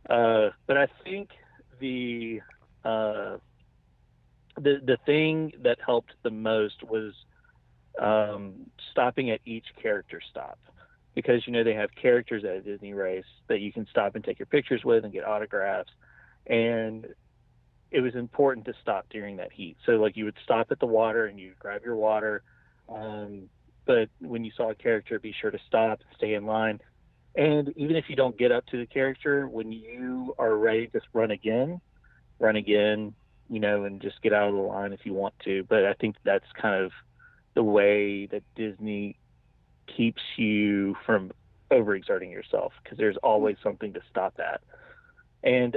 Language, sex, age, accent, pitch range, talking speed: English, male, 40-59, American, 105-130 Hz, 175 wpm